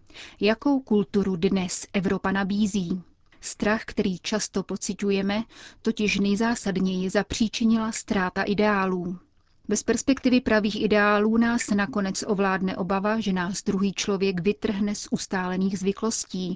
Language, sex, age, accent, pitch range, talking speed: Czech, female, 30-49, native, 195-220 Hz, 110 wpm